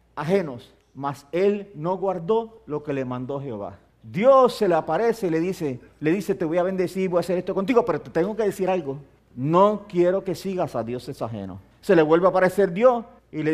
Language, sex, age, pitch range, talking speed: English, male, 50-69, 135-190 Hz, 215 wpm